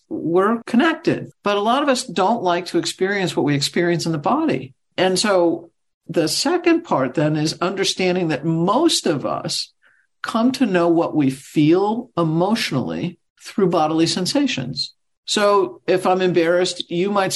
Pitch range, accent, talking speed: 160-200 Hz, American, 155 wpm